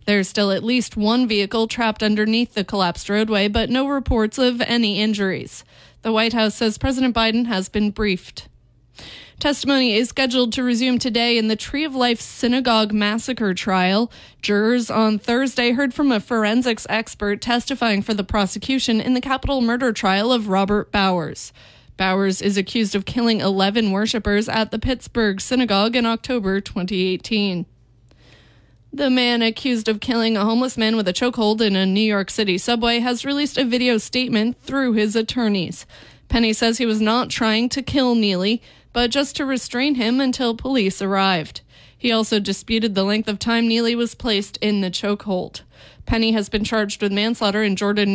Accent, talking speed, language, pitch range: American, 170 wpm, English, 205-245 Hz